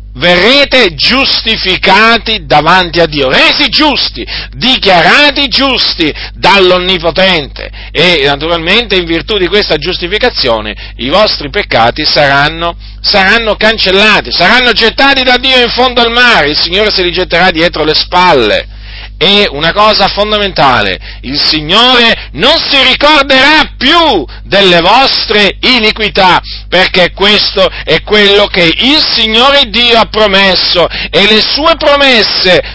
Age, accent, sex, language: 40-59, native, male, Italian